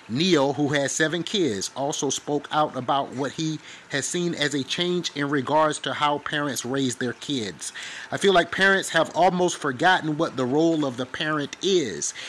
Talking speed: 185 wpm